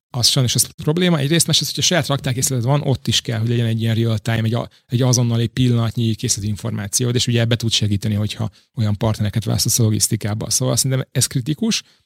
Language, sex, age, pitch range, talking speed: Hungarian, male, 30-49, 115-130 Hz, 210 wpm